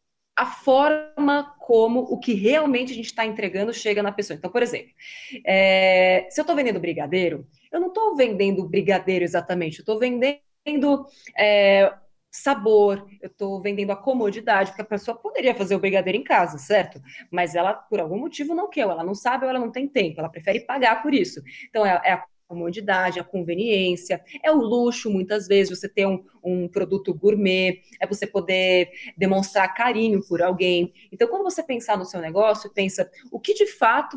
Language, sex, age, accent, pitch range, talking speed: Portuguese, female, 20-39, Brazilian, 185-255 Hz, 185 wpm